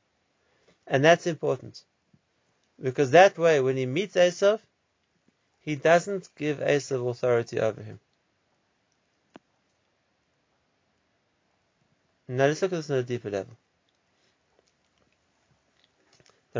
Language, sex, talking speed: English, male, 100 wpm